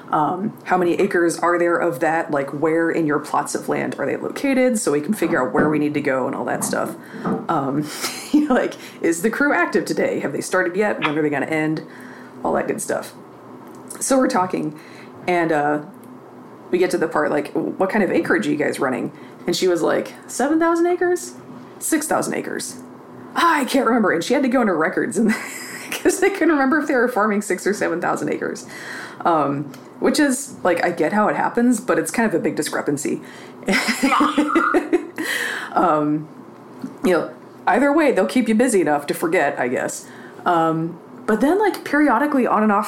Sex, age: female, 20-39